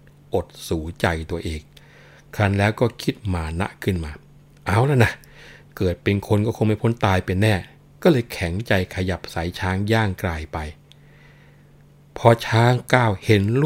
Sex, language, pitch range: male, Thai, 95-145 Hz